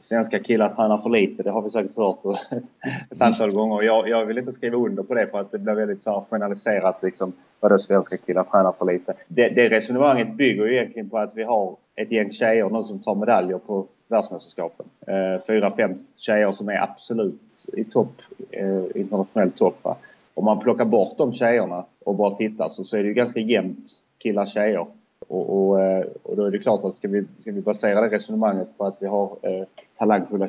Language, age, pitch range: Swedish, 30-49, 100-115 Hz